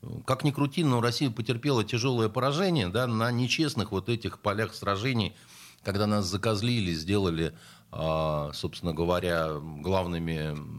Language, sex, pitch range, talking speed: Russian, male, 90-125 Hz, 120 wpm